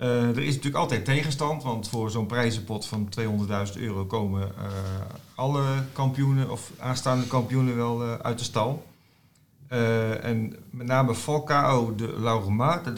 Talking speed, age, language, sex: 155 wpm, 40-59, Dutch, male